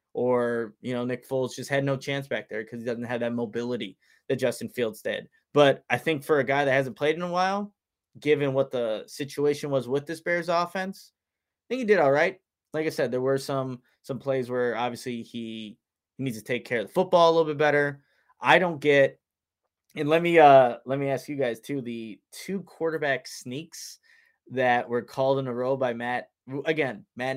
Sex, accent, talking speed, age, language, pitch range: male, American, 215 wpm, 20-39, English, 125-150 Hz